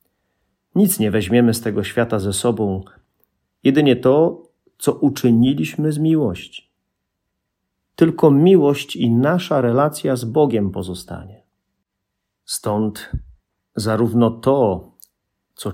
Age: 40-59